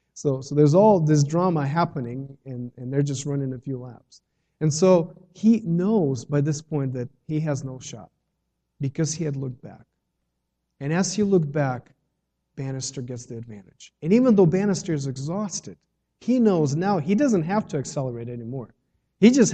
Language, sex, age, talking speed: English, male, 40-59, 180 wpm